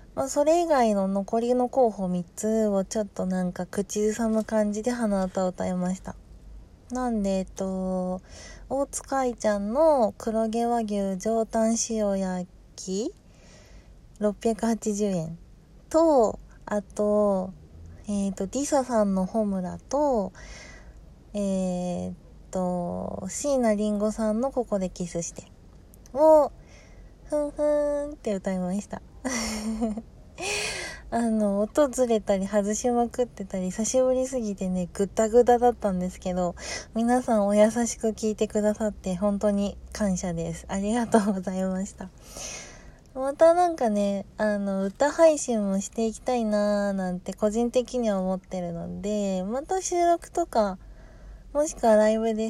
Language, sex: Japanese, female